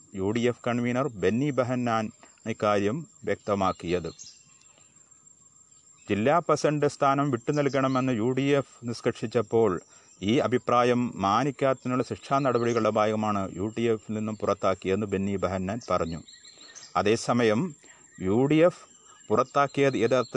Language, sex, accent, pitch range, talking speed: Malayalam, male, native, 105-130 Hz, 90 wpm